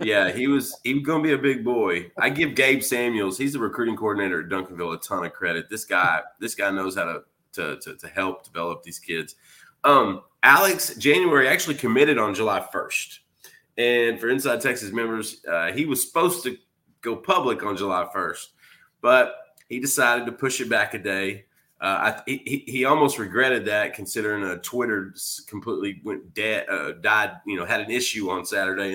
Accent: American